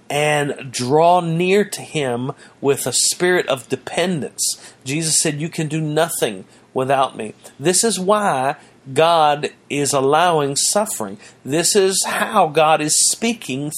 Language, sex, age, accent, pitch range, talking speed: English, male, 40-59, American, 145-200 Hz, 135 wpm